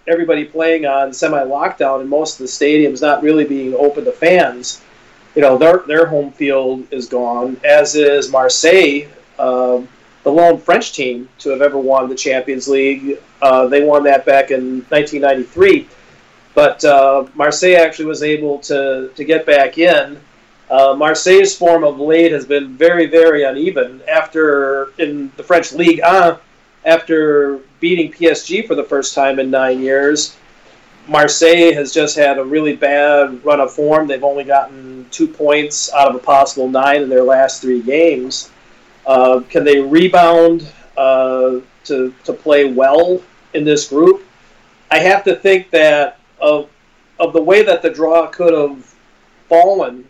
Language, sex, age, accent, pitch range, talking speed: English, male, 40-59, American, 135-165 Hz, 160 wpm